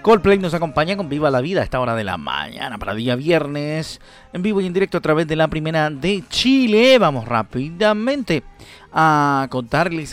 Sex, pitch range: male, 145-190 Hz